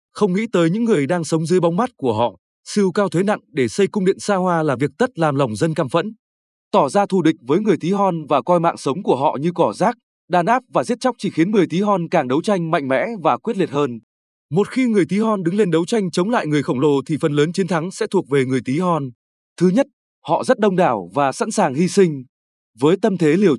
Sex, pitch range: male, 155-205 Hz